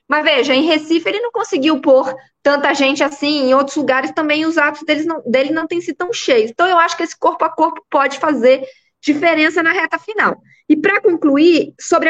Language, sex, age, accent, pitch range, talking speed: Portuguese, female, 20-39, Brazilian, 265-345 Hz, 215 wpm